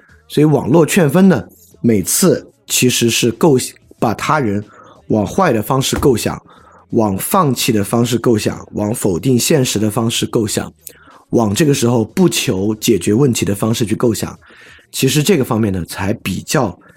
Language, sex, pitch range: Chinese, male, 105-130 Hz